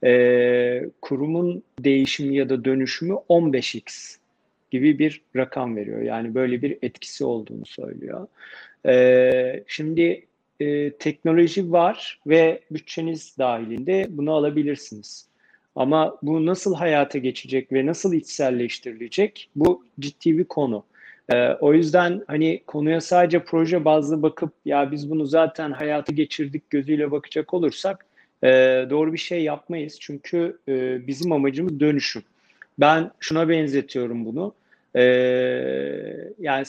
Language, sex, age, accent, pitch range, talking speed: Turkish, male, 40-59, native, 135-170 Hz, 115 wpm